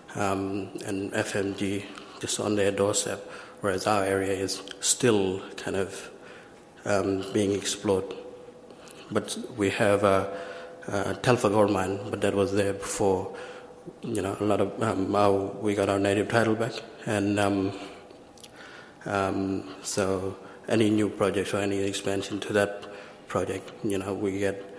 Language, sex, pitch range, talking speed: English, male, 100-105 Hz, 150 wpm